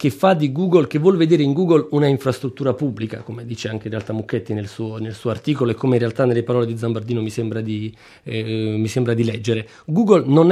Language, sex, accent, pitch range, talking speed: Italian, male, native, 115-135 Hz, 235 wpm